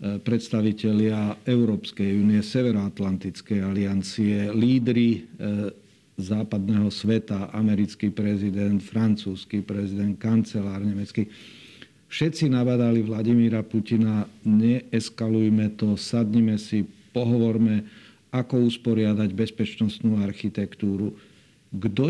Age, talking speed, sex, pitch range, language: 50-69, 75 wpm, male, 105-120 Hz, Slovak